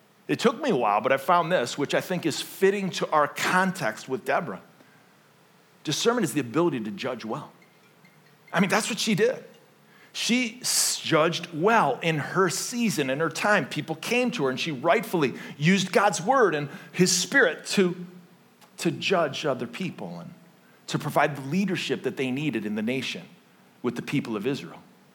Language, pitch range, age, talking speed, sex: English, 155-225 Hz, 40-59, 180 wpm, male